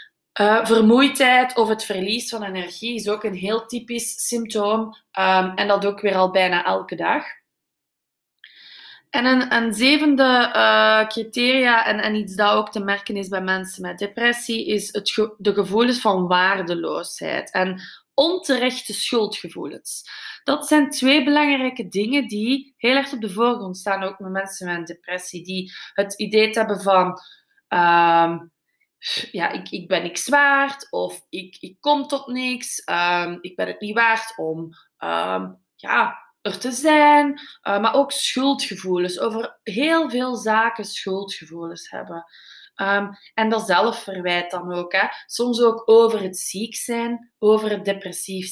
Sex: female